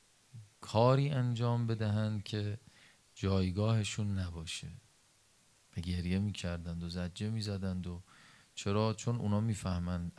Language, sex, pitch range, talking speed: Persian, male, 100-130 Hz, 95 wpm